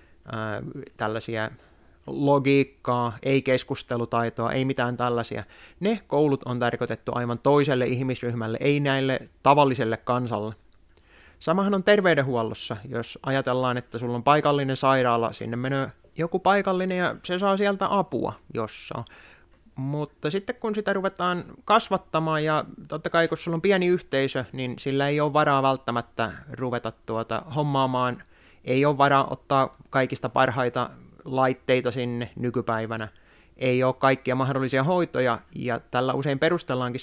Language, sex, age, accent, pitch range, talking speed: Finnish, male, 20-39, native, 120-155 Hz, 130 wpm